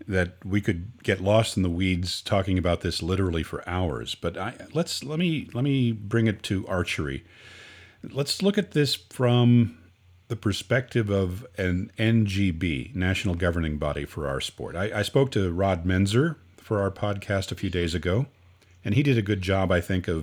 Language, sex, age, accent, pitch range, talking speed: English, male, 50-69, American, 90-115 Hz, 185 wpm